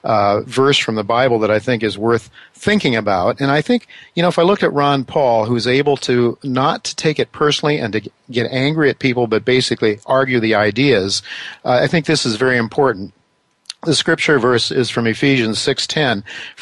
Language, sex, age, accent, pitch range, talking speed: English, male, 50-69, American, 110-130 Hz, 200 wpm